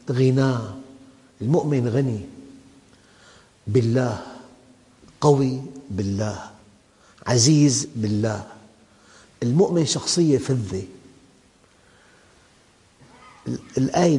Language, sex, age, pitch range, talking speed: English, male, 50-69, 110-140 Hz, 50 wpm